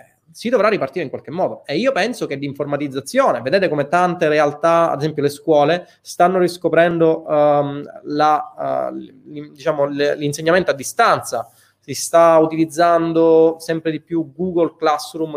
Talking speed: 125 wpm